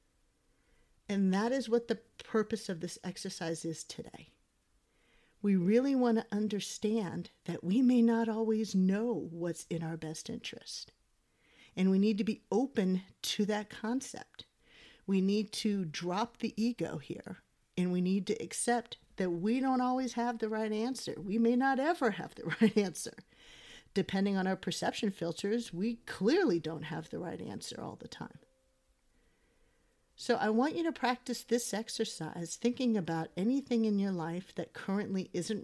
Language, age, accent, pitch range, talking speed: English, 50-69, American, 175-230 Hz, 160 wpm